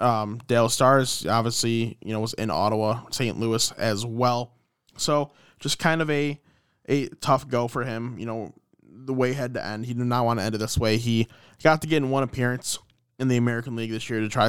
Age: 20-39